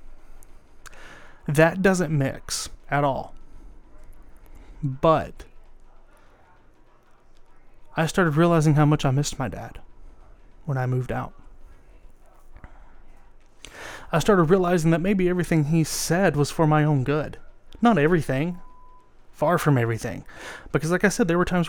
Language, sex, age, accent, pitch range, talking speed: English, male, 30-49, American, 130-165 Hz, 120 wpm